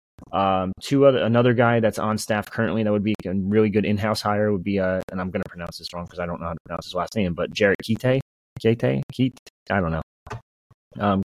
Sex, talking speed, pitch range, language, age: male, 245 wpm, 95-115 Hz, English, 30-49